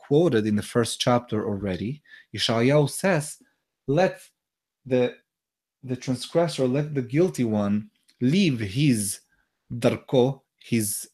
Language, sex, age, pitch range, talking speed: English, male, 30-49, 110-140 Hz, 110 wpm